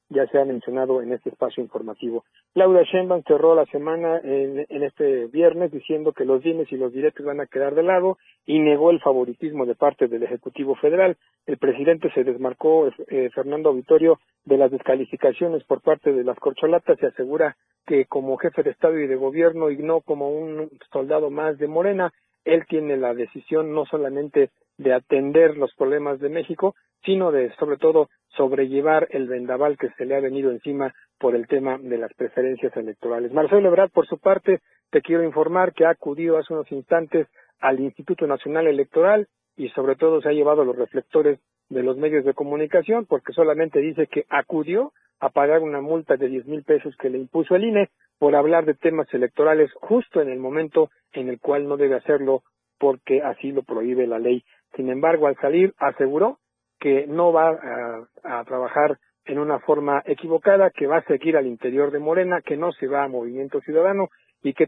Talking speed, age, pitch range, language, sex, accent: 190 wpm, 50-69, 135-170 Hz, Spanish, male, Mexican